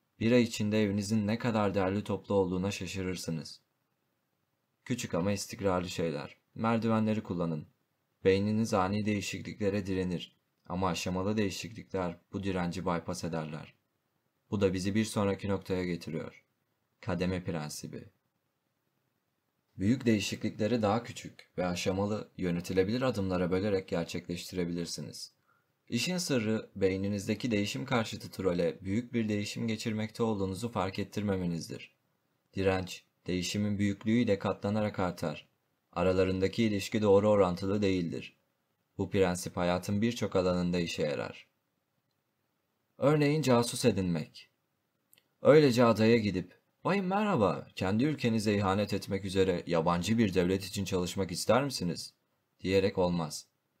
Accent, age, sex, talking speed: native, 30-49, male, 110 wpm